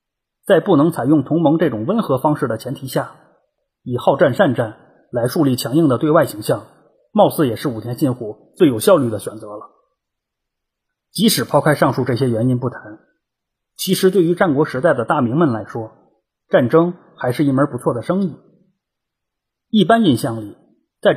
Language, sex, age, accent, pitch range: Chinese, male, 30-49, native, 125-175 Hz